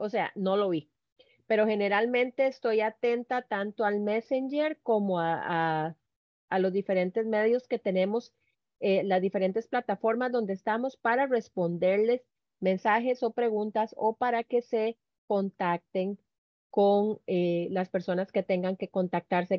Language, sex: Spanish, female